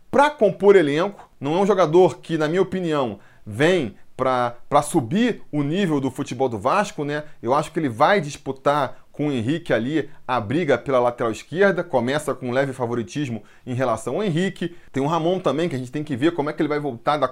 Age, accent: 20-39, Brazilian